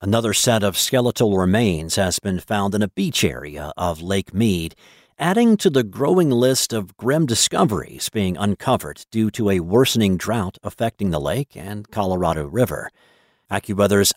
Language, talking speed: English, 155 wpm